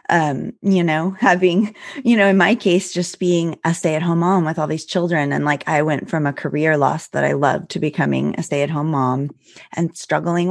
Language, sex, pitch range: English, female, 160-205 Hz